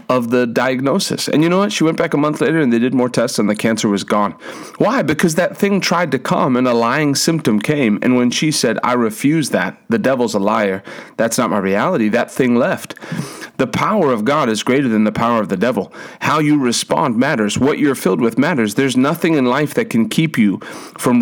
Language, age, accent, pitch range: English, 40-59, American, 115-150 Hz